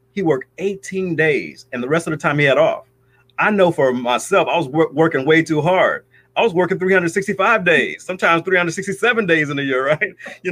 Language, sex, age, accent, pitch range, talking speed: English, male, 30-49, American, 135-185 Hz, 210 wpm